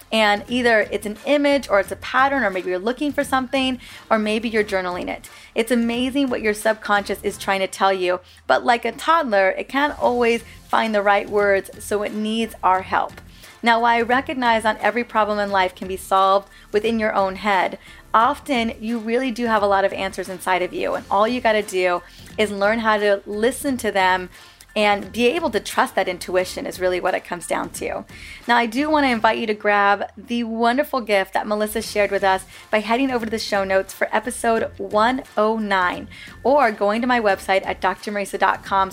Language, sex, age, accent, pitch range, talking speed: English, female, 20-39, American, 195-245 Hz, 210 wpm